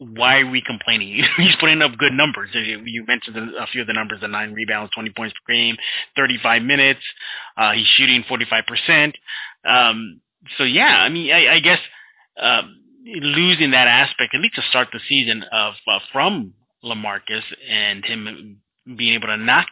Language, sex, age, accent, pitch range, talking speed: English, male, 30-49, American, 110-145 Hz, 185 wpm